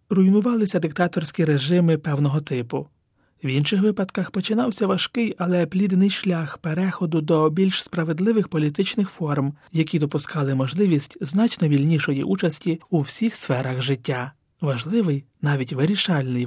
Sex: male